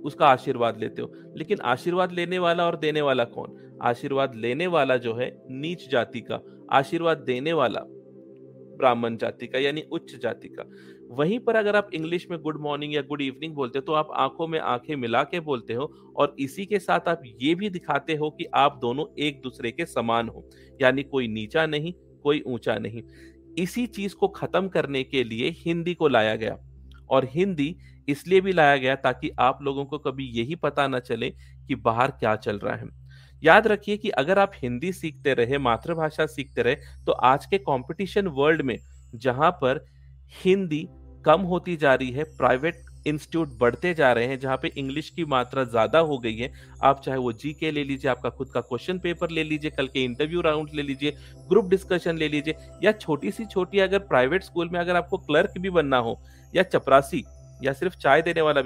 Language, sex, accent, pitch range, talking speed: Hindi, male, native, 120-165 Hz, 195 wpm